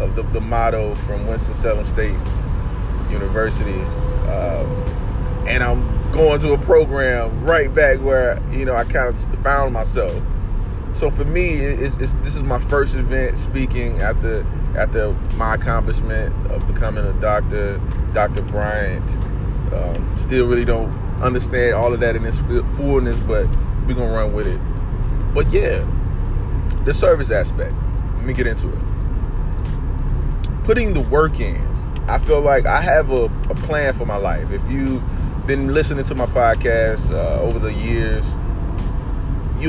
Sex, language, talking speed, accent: male, English, 155 wpm, American